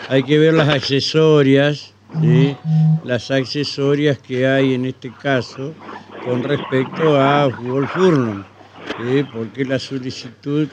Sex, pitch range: male, 120-145 Hz